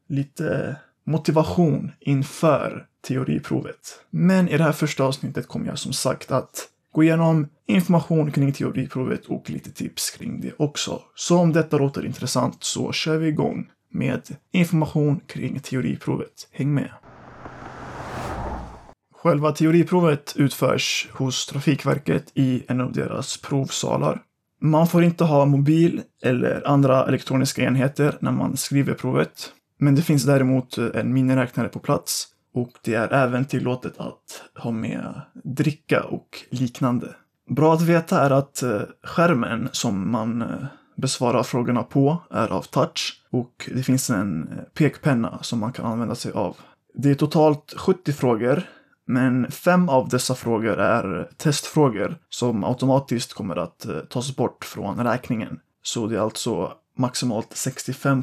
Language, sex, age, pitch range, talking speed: Swedish, male, 20-39, 125-155 Hz, 140 wpm